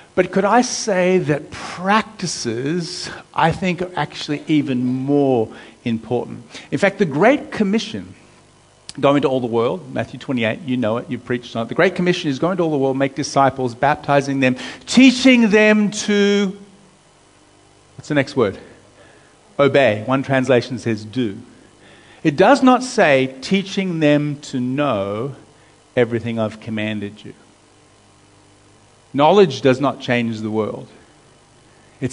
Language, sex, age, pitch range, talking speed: English, male, 50-69, 115-165 Hz, 140 wpm